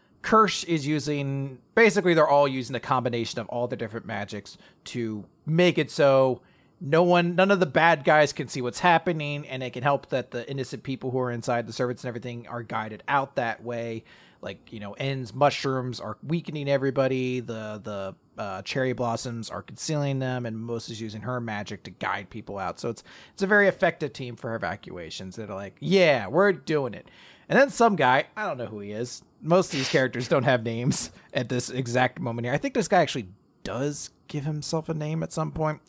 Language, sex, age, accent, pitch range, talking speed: English, male, 30-49, American, 125-185 Hz, 210 wpm